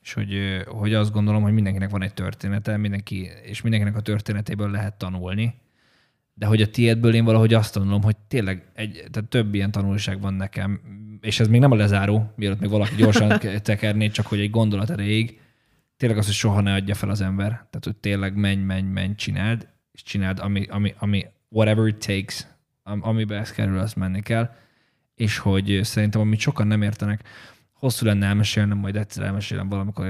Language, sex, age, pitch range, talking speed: Hungarian, male, 20-39, 100-110 Hz, 185 wpm